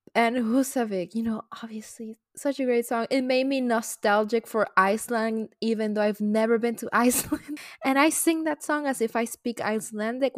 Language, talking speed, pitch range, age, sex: English, 185 wpm, 185-230 Hz, 20-39, female